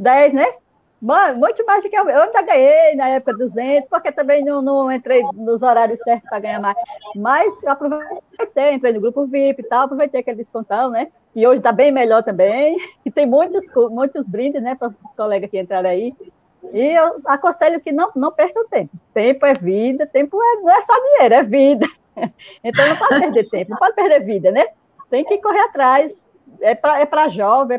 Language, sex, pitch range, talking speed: Portuguese, female, 240-310 Hz, 200 wpm